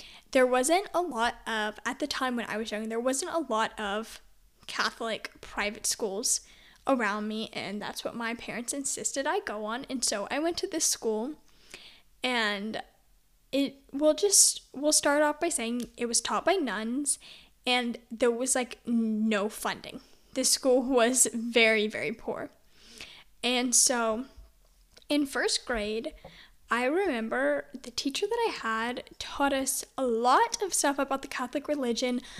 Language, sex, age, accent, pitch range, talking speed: English, female, 10-29, American, 225-270 Hz, 160 wpm